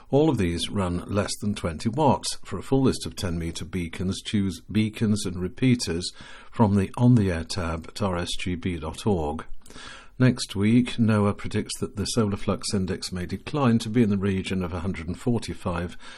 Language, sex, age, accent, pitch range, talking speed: English, male, 60-79, British, 90-115 Hz, 165 wpm